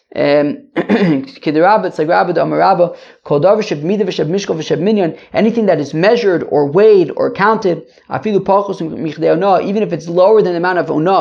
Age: 20-39